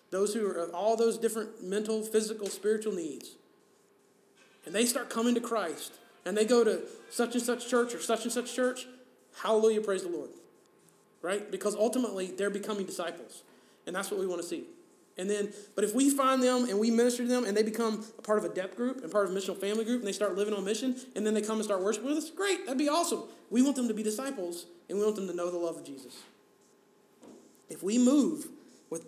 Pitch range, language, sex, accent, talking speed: 195-240 Hz, English, male, American, 235 wpm